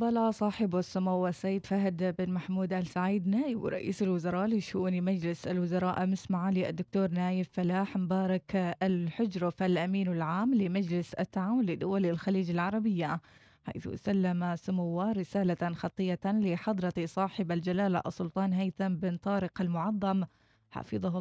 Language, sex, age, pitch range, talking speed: Arabic, female, 20-39, 175-210 Hz, 115 wpm